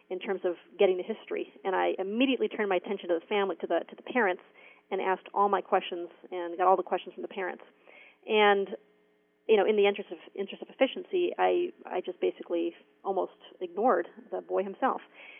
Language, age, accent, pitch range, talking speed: English, 30-49, American, 180-205 Hz, 205 wpm